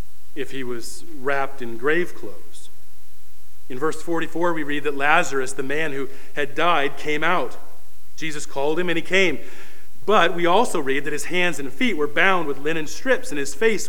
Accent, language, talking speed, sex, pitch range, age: American, English, 190 wpm, male, 130-170 Hz, 40-59